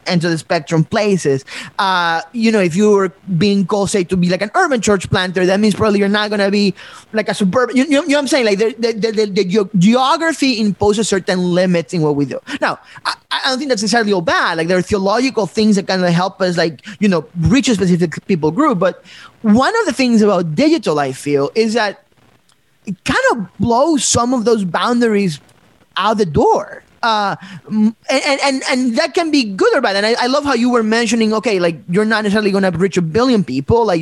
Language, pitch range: English, 180-230 Hz